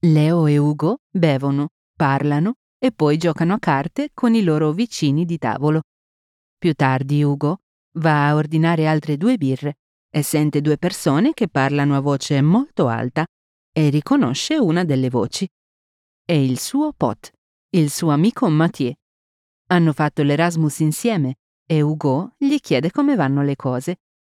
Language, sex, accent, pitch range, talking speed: Italian, female, native, 140-175 Hz, 150 wpm